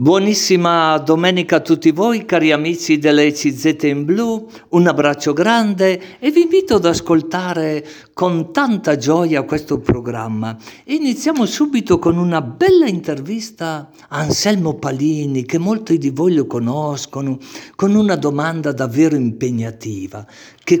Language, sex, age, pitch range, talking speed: Italian, male, 50-69, 130-185 Hz, 130 wpm